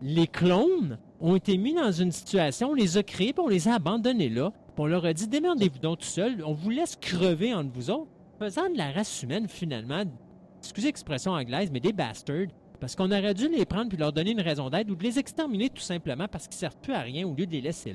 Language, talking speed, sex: French, 255 wpm, male